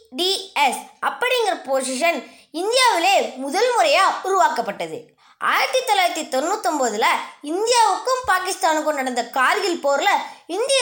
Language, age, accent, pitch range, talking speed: Tamil, 20-39, native, 285-390 Hz, 85 wpm